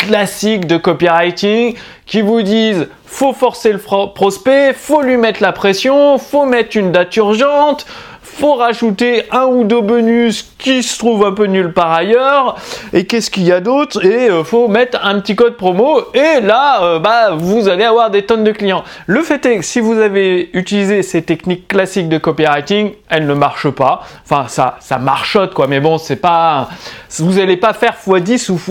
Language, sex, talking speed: French, male, 185 wpm